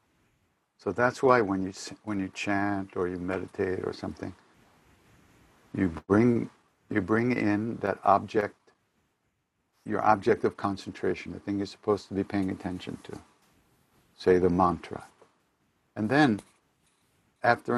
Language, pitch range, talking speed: English, 95-115 Hz, 130 wpm